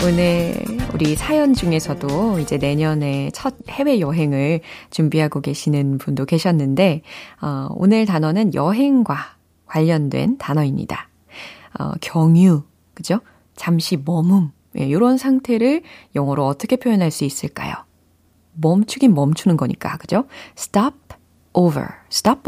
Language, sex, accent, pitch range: Korean, female, native, 145-225 Hz